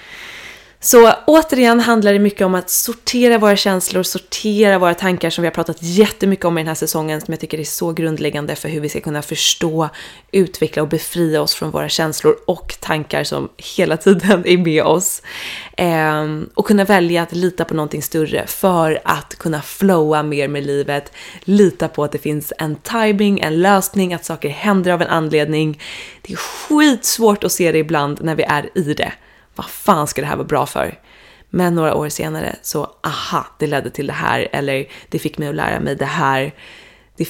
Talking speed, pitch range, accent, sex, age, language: 195 wpm, 150-190 Hz, Swedish, female, 20-39, English